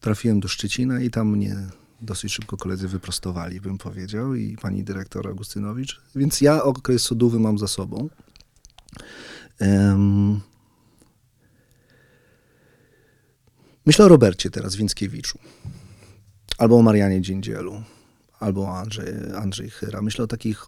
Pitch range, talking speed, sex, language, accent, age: 100-125 Hz, 115 wpm, male, Polish, native, 40-59